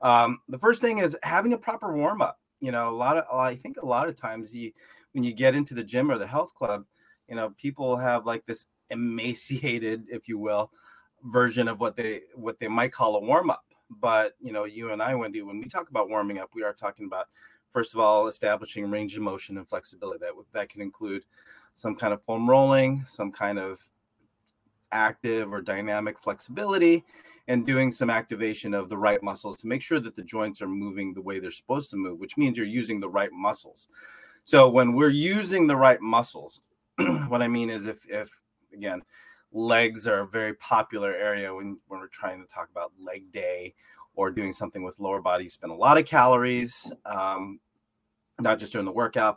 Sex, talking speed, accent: male, 205 wpm, American